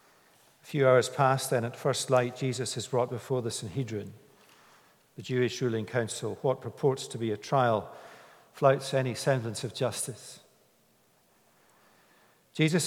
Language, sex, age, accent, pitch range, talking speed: English, male, 50-69, British, 125-155 Hz, 140 wpm